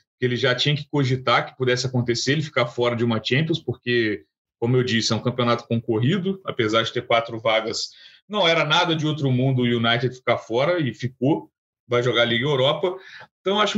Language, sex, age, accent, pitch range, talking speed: Portuguese, male, 30-49, Brazilian, 120-175 Hz, 205 wpm